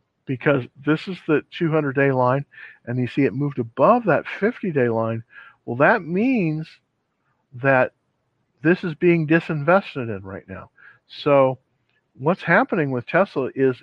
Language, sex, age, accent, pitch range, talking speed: English, male, 50-69, American, 125-165 Hz, 140 wpm